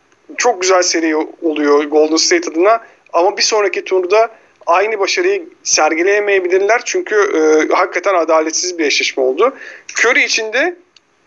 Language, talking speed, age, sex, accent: Turkish, 120 wpm, 40-59, male, native